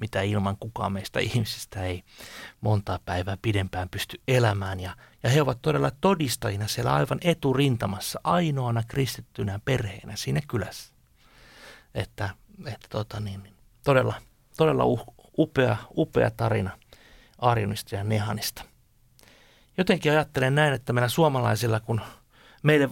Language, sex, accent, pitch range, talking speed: Finnish, male, native, 110-135 Hz, 120 wpm